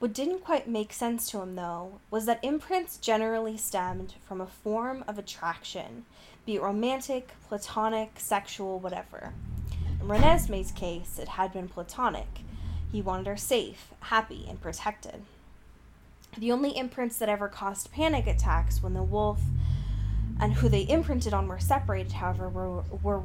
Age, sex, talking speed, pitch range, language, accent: 10-29, female, 150 wpm, 185-230 Hz, English, American